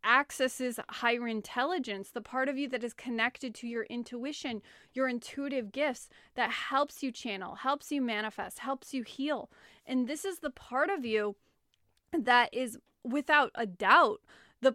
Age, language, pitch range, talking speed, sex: 20-39, English, 220-275 Hz, 160 wpm, female